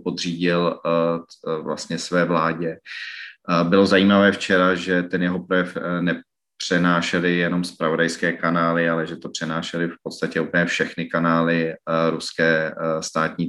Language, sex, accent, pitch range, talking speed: Czech, male, native, 80-85 Hz, 115 wpm